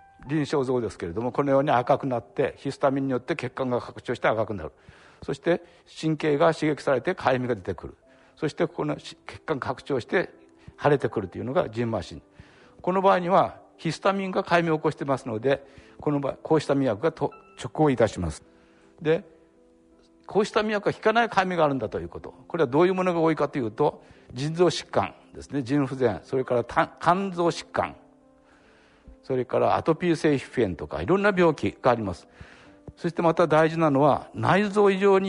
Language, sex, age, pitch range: Japanese, male, 60-79, 115-165 Hz